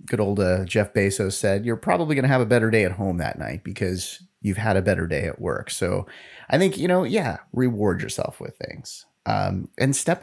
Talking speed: 230 wpm